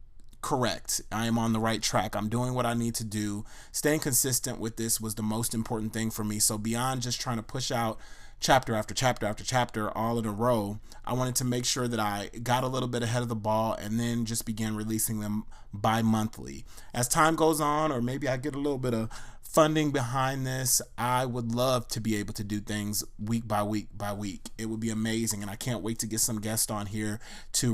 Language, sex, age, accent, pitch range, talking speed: English, male, 30-49, American, 110-125 Hz, 230 wpm